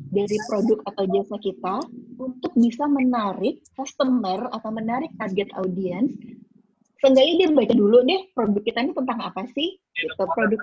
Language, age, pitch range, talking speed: Indonesian, 20-39, 200-275 Hz, 145 wpm